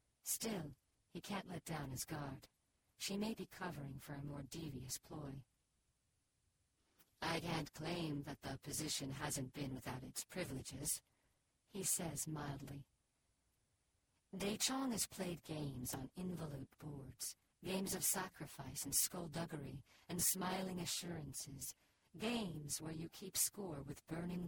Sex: female